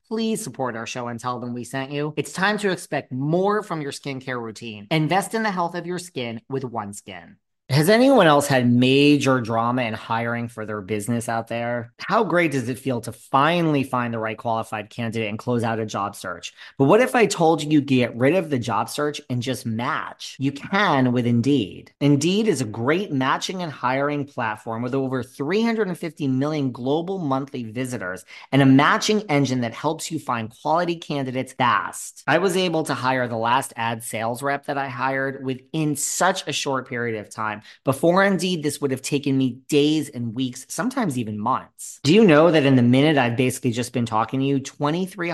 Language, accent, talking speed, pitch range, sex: English, American, 200 wpm, 120-155 Hz, male